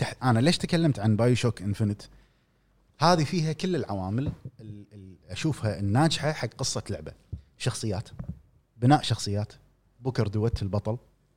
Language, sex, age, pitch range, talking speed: Arabic, male, 30-49, 110-150 Hz, 120 wpm